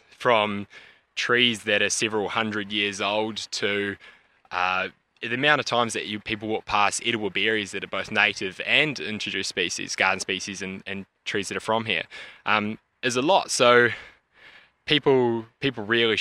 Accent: Australian